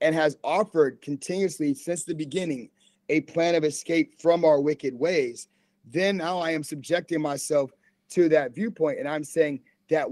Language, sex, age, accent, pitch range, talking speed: English, male, 30-49, American, 145-190 Hz, 165 wpm